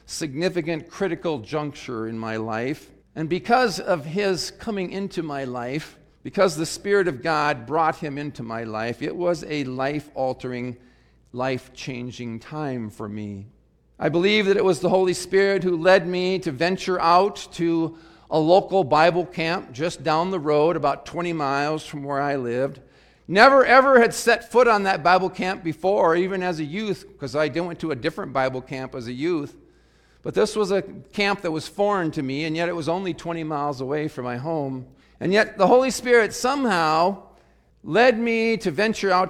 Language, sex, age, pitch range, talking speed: English, male, 50-69, 130-180 Hz, 185 wpm